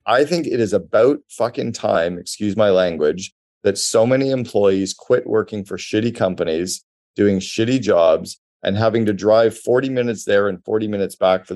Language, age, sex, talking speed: English, 40-59, male, 175 wpm